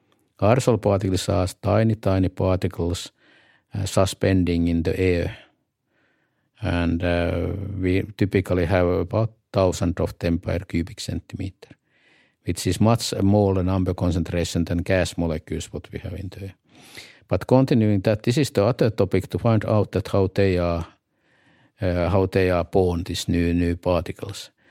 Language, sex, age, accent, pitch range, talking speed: English, male, 50-69, Finnish, 90-110 Hz, 150 wpm